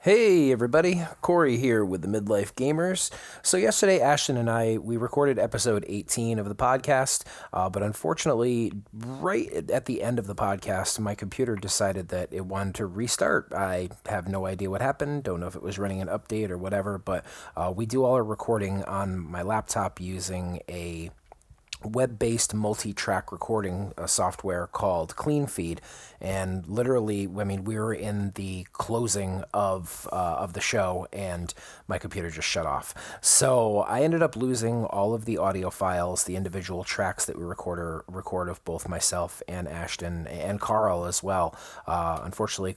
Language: English